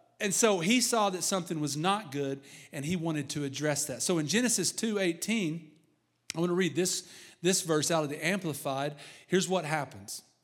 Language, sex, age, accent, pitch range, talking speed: English, male, 40-59, American, 160-220 Hz, 195 wpm